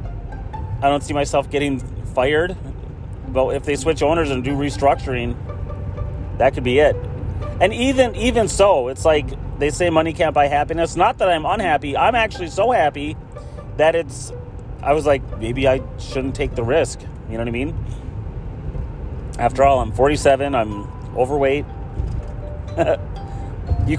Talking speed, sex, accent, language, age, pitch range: 155 wpm, male, American, English, 30-49, 100-140 Hz